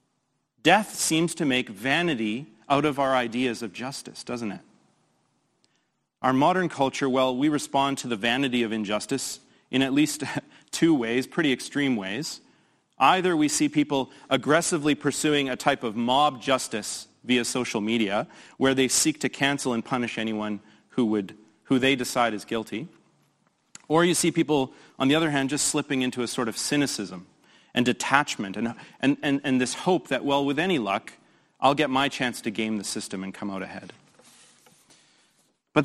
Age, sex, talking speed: 30-49, male, 170 wpm